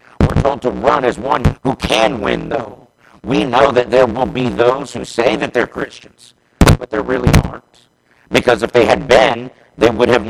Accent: American